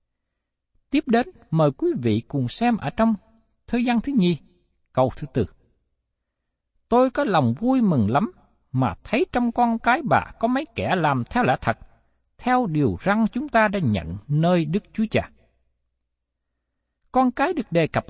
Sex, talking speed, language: male, 170 wpm, Vietnamese